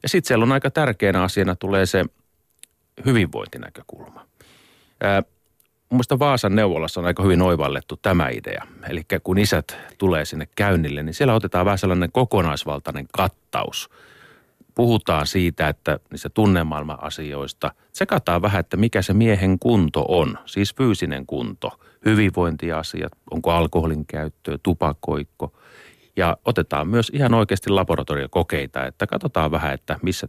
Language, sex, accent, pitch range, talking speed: Finnish, male, native, 80-110 Hz, 135 wpm